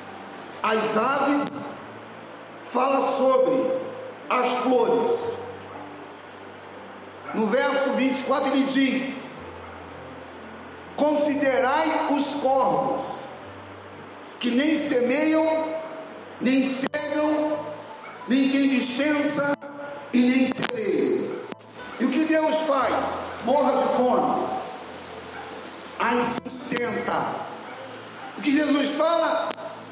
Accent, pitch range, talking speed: Brazilian, 255-310 Hz, 80 wpm